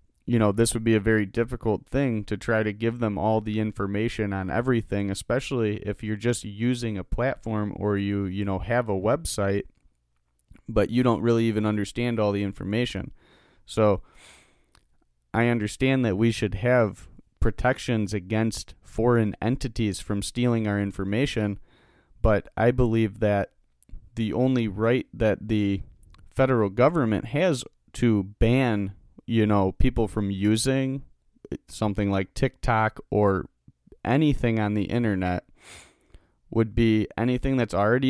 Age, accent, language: 30-49, American, English